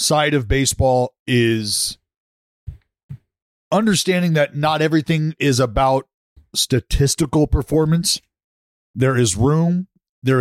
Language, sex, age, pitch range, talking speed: English, male, 40-59, 115-145 Hz, 90 wpm